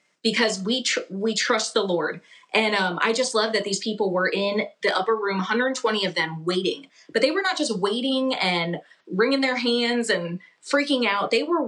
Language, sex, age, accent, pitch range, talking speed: English, female, 20-39, American, 185-235 Hz, 200 wpm